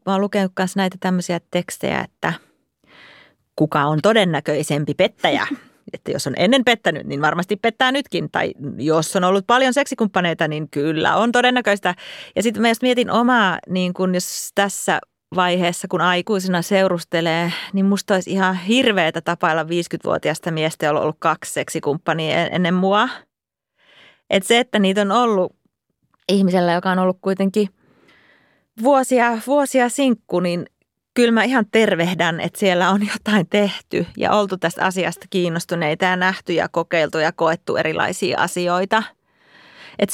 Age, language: 30-49, Finnish